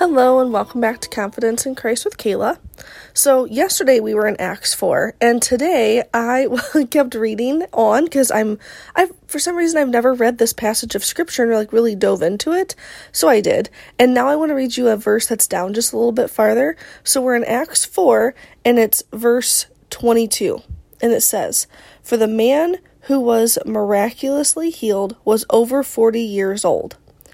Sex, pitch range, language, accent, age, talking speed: female, 220-260 Hz, English, American, 20-39, 185 wpm